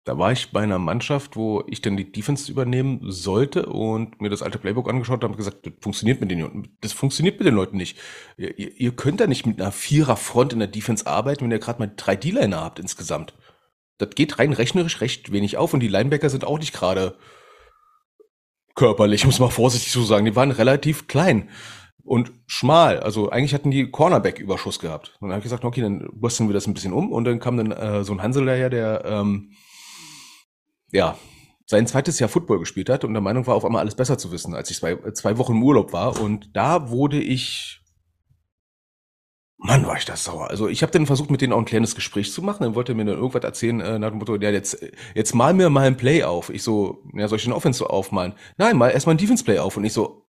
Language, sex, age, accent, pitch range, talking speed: German, male, 30-49, German, 105-135 Hz, 230 wpm